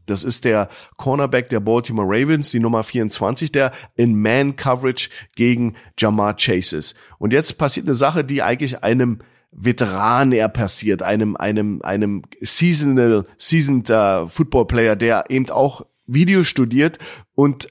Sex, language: male, German